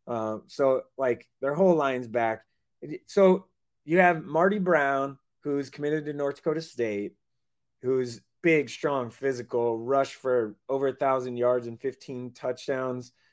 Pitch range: 120-145 Hz